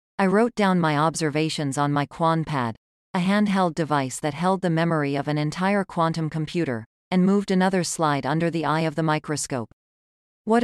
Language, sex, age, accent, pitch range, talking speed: English, female, 40-59, American, 150-185 Hz, 180 wpm